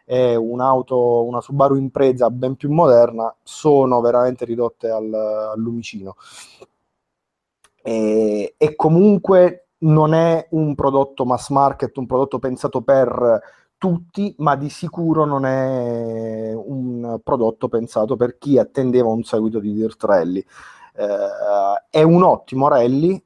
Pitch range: 115-140 Hz